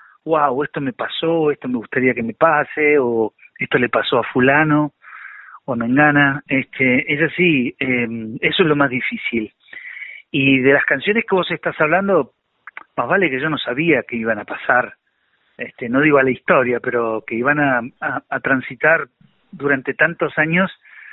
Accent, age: Argentinian, 40-59